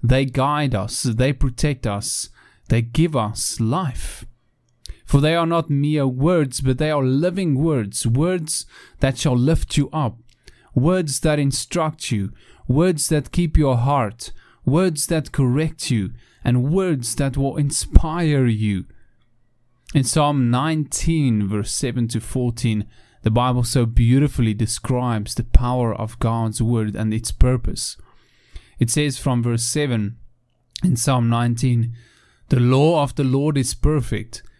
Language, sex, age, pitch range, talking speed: English, male, 30-49, 115-145 Hz, 140 wpm